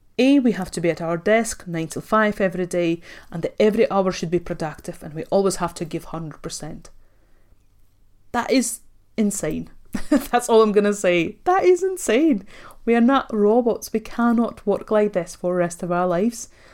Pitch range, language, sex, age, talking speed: 170-220 Hz, English, female, 30-49, 195 wpm